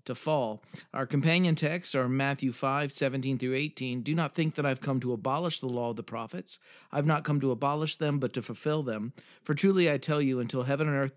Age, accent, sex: 40-59, American, male